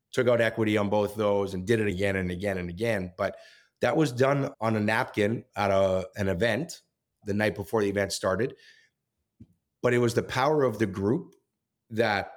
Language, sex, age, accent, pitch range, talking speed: English, male, 30-49, American, 100-120 Hz, 190 wpm